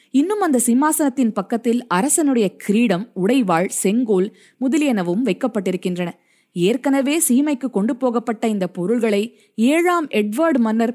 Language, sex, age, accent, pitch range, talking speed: Tamil, female, 20-39, native, 190-265 Hz, 105 wpm